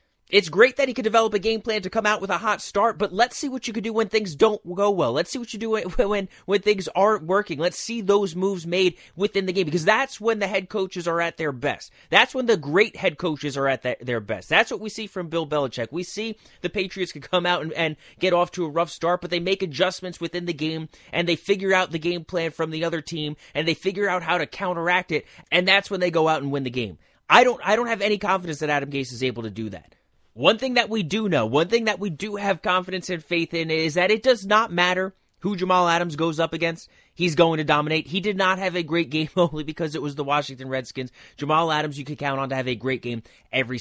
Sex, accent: male, American